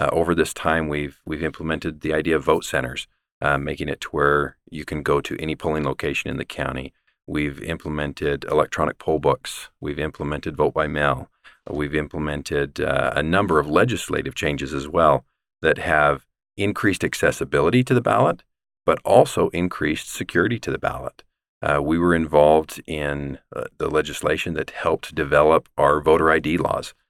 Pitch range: 75-85 Hz